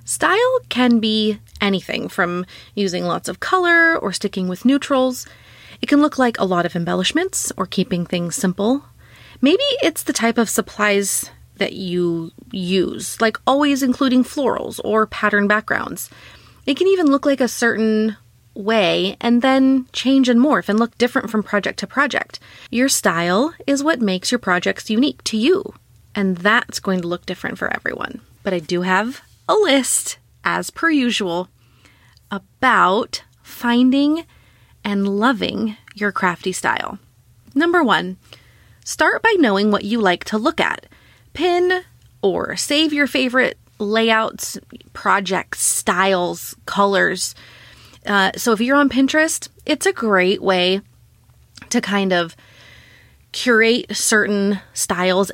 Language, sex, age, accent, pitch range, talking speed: English, female, 30-49, American, 190-265 Hz, 140 wpm